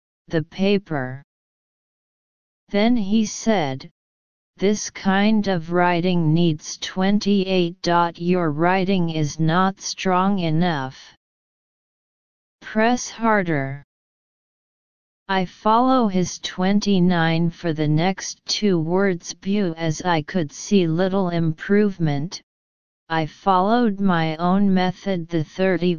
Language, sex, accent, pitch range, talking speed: English, female, American, 160-195 Hz, 95 wpm